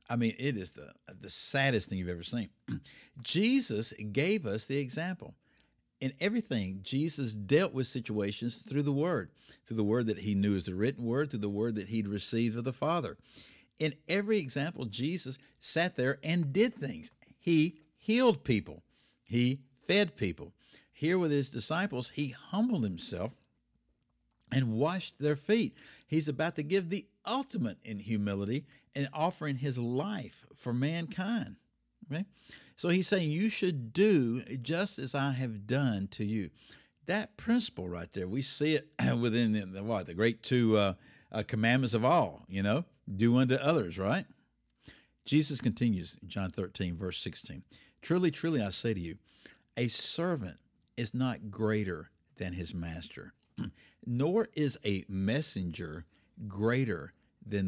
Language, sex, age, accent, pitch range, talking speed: English, male, 60-79, American, 105-155 Hz, 155 wpm